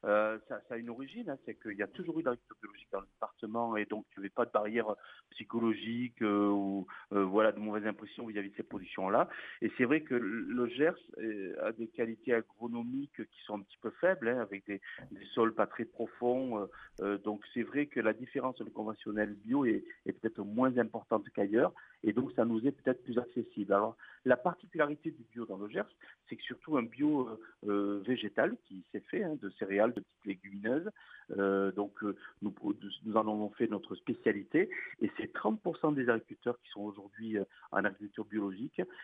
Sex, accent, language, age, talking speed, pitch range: male, French, French, 50-69, 200 wpm, 105-135 Hz